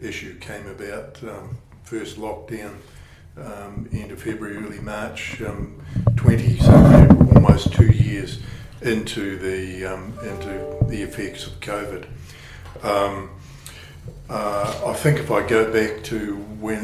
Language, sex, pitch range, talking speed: English, male, 100-115 Hz, 120 wpm